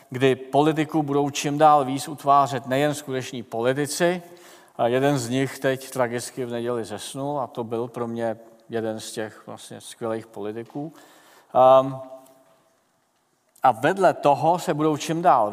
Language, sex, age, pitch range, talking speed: Czech, male, 40-59, 115-145 Hz, 145 wpm